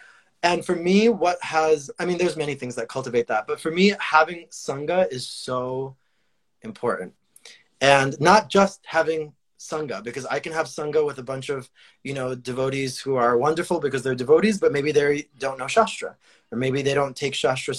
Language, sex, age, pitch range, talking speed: English, male, 20-39, 130-165 Hz, 190 wpm